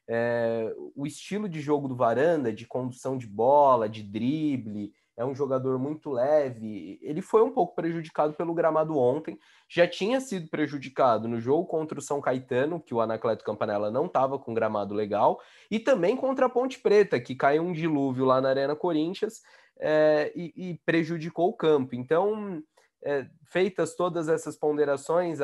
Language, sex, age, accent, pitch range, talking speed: Portuguese, male, 20-39, Brazilian, 135-170 Hz, 160 wpm